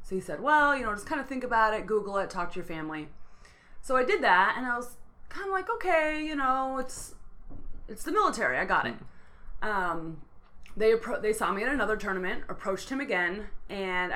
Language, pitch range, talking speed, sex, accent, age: English, 165-215 Hz, 210 wpm, female, American, 20-39